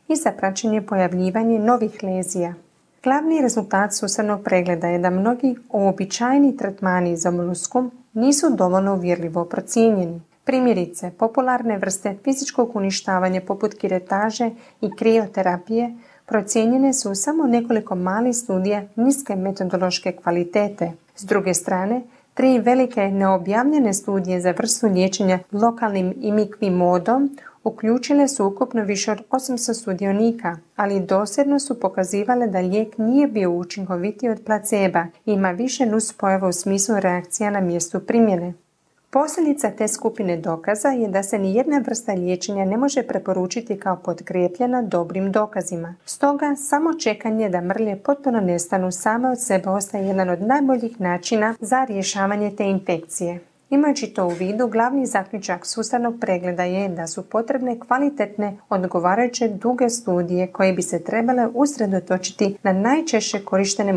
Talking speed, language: 130 wpm, Croatian